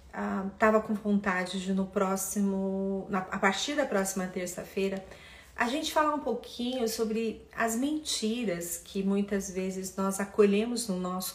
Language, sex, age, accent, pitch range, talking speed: Portuguese, female, 40-59, Brazilian, 195-225 Hz, 150 wpm